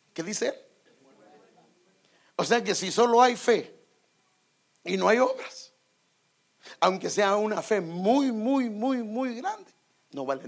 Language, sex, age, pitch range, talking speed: English, male, 50-69, 150-215 Hz, 145 wpm